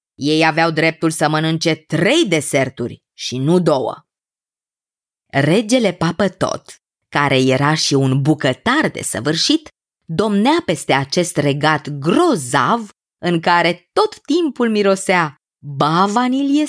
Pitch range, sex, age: 155-230 Hz, female, 20-39